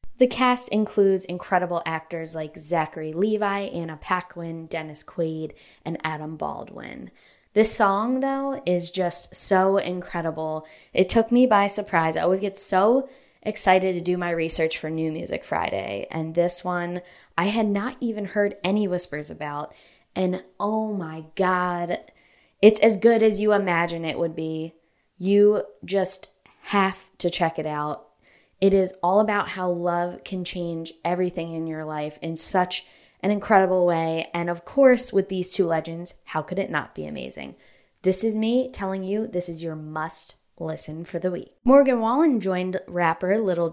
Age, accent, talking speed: 20-39, American, 165 wpm